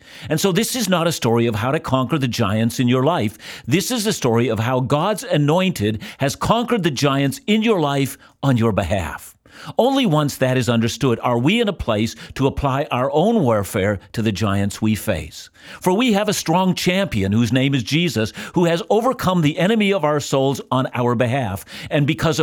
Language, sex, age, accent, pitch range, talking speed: English, male, 50-69, American, 115-175 Hz, 205 wpm